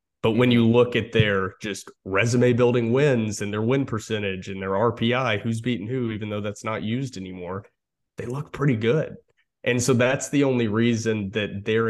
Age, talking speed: 20-39, 190 wpm